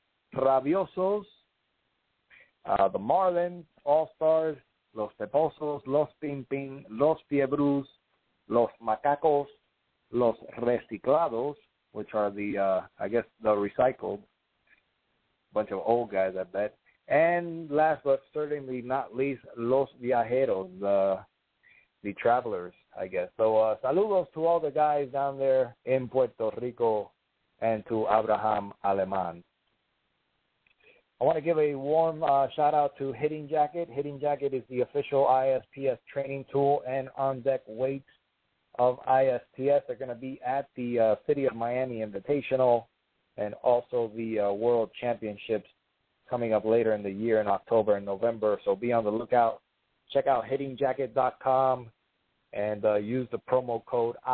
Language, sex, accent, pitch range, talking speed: English, male, American, 110-140 Hz, 135 wpm